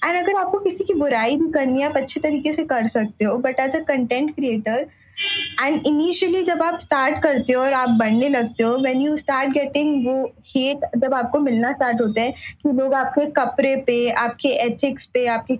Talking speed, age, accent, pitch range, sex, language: 210 wpm, 20-39, native, 250-300 Hz, female, Hindi